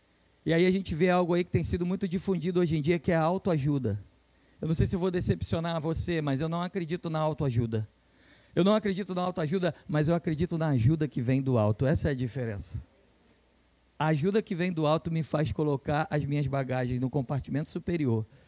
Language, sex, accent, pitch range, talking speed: Portuguese, male, Brazilian, 125-180 Hz, 215 wpm